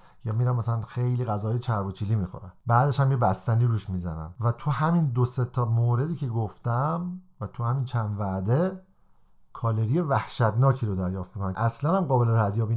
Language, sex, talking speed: Persian, male, 170 wpm